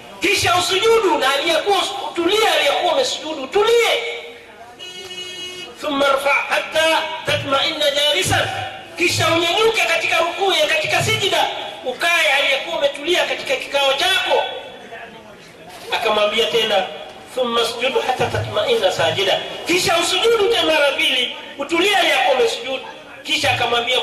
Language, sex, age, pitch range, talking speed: Swahili, male, 40-59, 230-345 Hz, 100 wpm